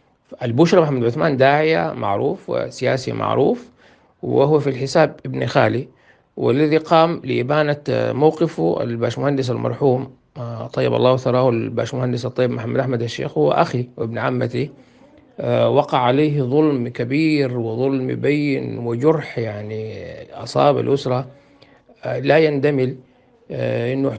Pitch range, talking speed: 125-140 Hz, 105 wpm